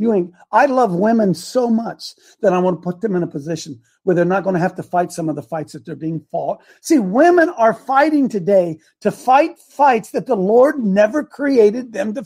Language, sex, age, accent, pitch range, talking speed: English, male, 50-69, American, 195-295 Hz, 220 wpm